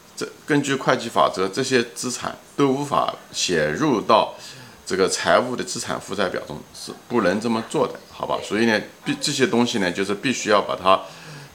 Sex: male